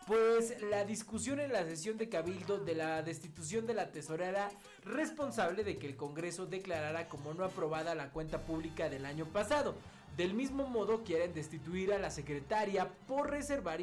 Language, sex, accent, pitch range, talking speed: Spanish, male, Mexican, 160-215 Hz, 170 wpm